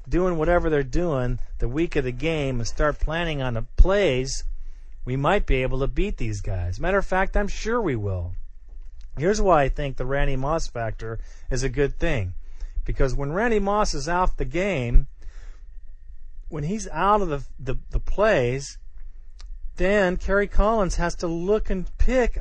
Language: English